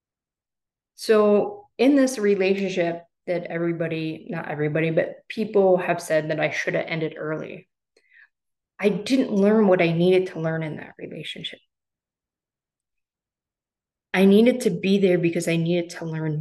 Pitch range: 170-200 Hz